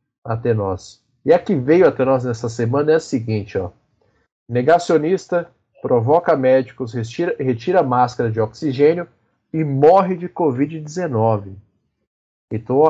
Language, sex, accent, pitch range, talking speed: Portuguese, male, Brazilian, 115-150 Hz, 115 wpm